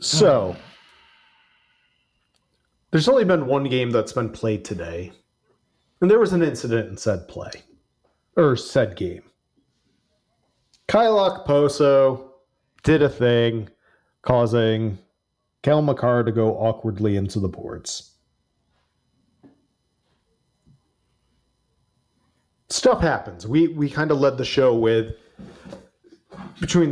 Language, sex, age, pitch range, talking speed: English, male, 40-59, 115-165 Hz, 105 wpm